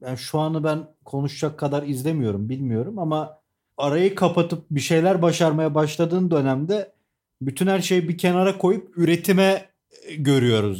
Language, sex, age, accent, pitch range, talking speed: Turkish, male, 40-59, native, 135-160 Hz, 135 wpm